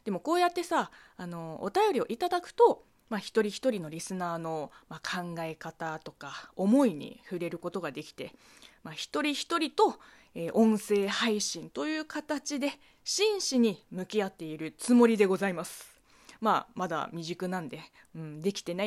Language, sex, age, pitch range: Japanese, female, 20-39, 175-260 Hz